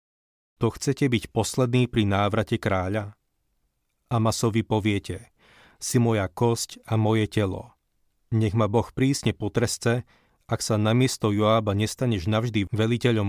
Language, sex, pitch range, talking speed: Slovak, male, 100-115 Hz, 120 wpm